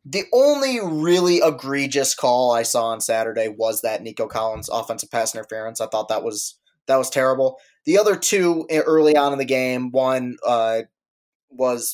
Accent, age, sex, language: American, 20-39, male, English